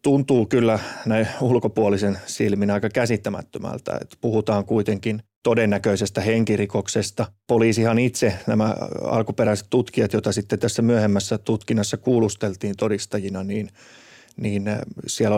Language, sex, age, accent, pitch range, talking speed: Finnish, male, 30-49, native, 100-115 Hz, 105 wpm